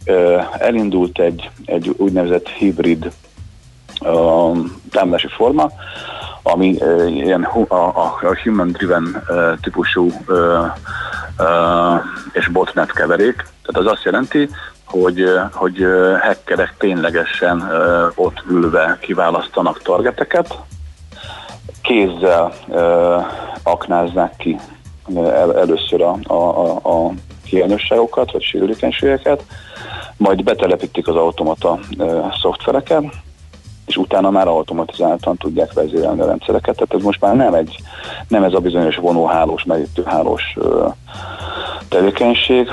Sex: male